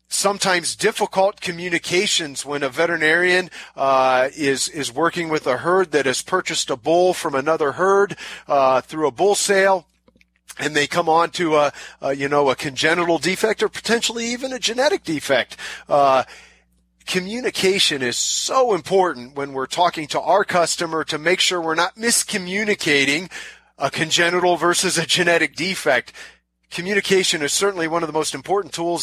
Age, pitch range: 40-59, 135-175 Hz